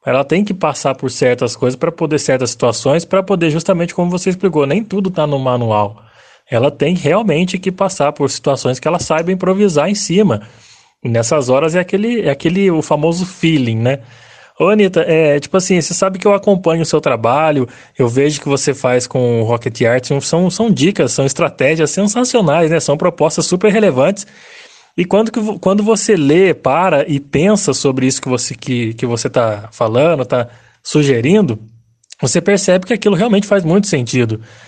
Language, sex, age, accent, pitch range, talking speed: Portuguese, male, 20-39, Brazilian, 130-195 Hz, 185 wpm